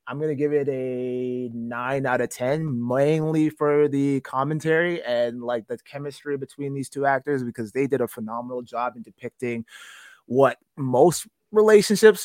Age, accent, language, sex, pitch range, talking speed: 20-39, American, English, male, 125-155 Hz, 160 wpm